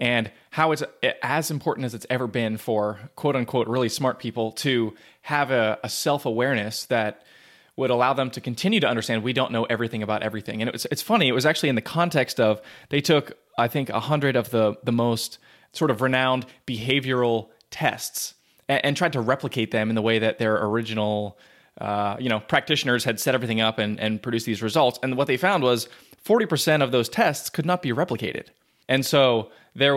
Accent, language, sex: American, English, male